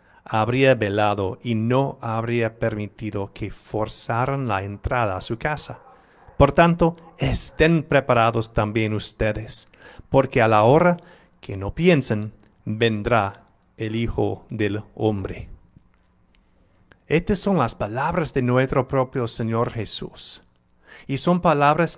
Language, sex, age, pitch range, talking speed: English, male, 40-59, 110-140 Hz, 115 wpm